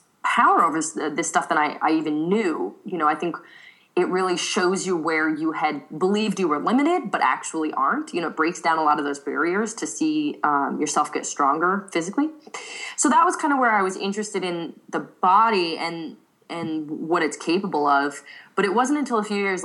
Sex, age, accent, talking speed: female, 20-39, American, 210 wpm